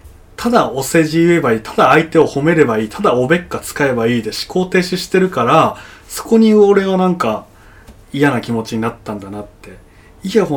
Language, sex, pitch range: Japanese, male, 100-125 Hz